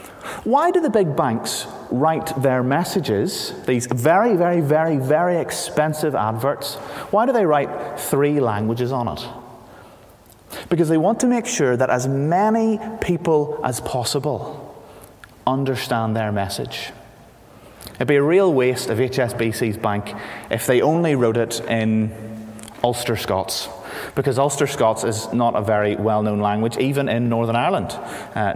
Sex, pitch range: male, 110-145 Hz